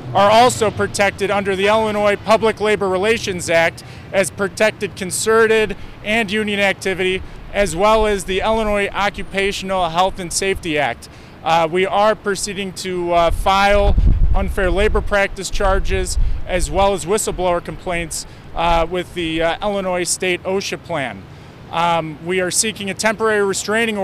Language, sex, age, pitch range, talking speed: English, male, 30-49, 170-205 Hz, 140 wpm